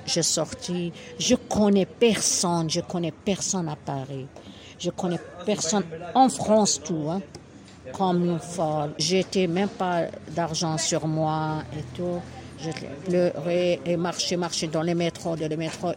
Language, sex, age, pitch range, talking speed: French, female, 50-69, 160-185 Hz, 150 wpm